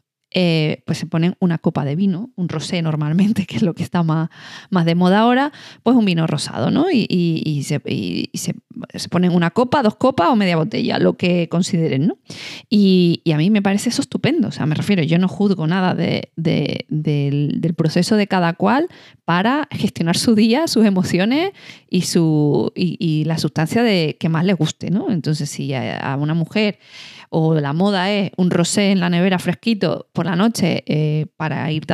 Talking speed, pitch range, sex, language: 195 wpm, 160-200 Hz, female, Spanish